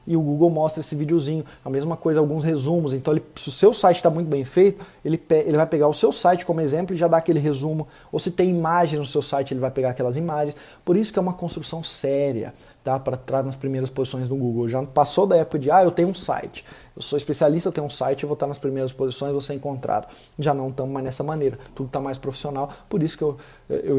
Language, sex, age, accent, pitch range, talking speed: Portuguese, male, 20-39, Brazilian, 135-180 Hz, 260 wpm